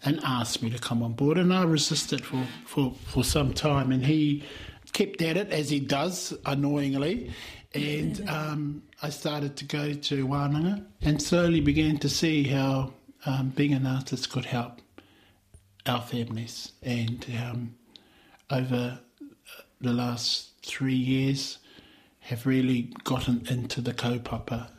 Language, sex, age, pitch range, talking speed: English, male, 60-79, 120-140 Hz, 140 wpm